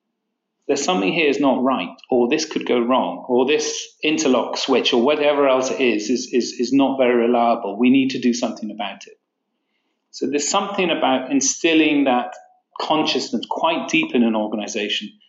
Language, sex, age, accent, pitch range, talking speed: English, male, 40-59, British, 120-165 Hz, 175 wpm